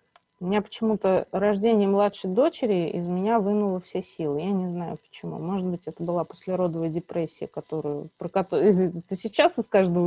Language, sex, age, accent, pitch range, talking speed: Russian, female, 20-39, native, 175-215 Hz, 165 wpm